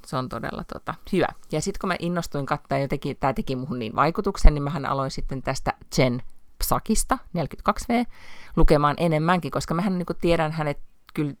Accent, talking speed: native, 175 wpm